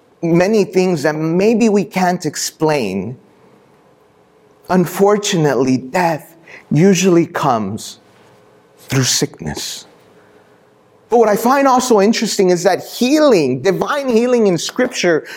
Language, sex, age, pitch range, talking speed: English, male, 30-49, 155-220 Hz, 100 wpm